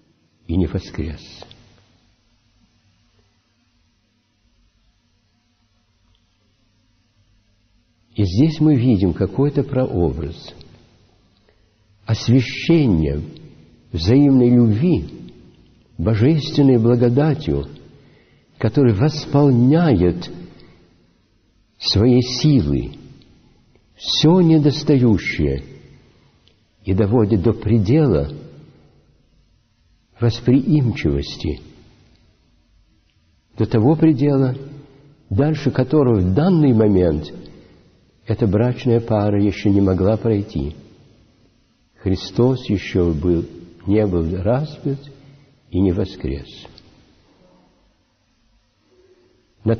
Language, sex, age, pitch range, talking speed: Russian, male, 60-79, 95-125 Hz, 60 wpm